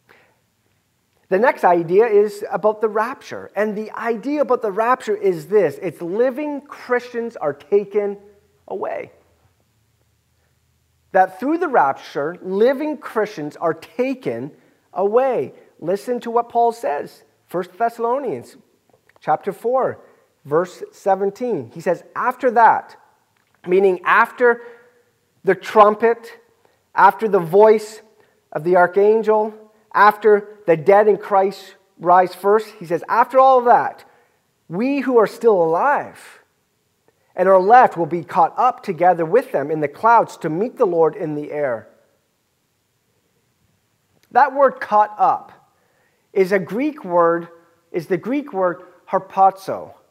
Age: 30-49